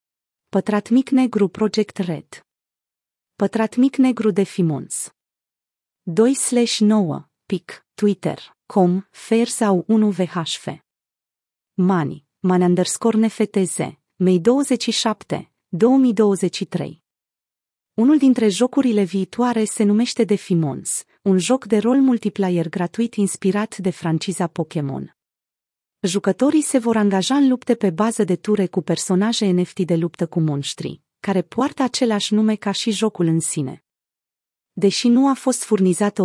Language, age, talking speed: Romanian, 30-49, 110 wpm